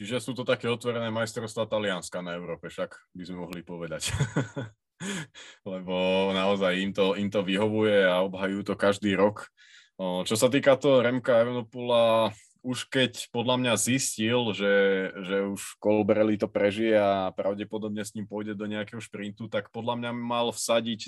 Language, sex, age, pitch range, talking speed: Slovak, male, 20-39, 100-120 Hz, 160 wpm